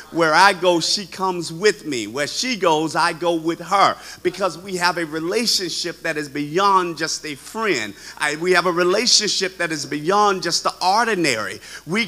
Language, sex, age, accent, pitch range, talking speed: English, male, 50-69, American, 170-205 Hz, 185 wpm